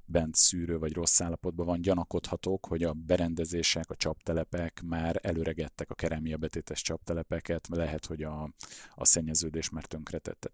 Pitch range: 80-90 Hz